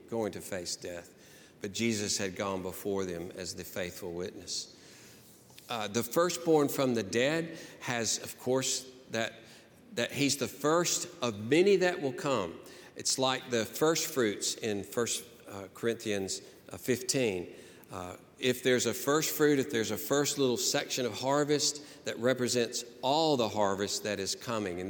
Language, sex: English, male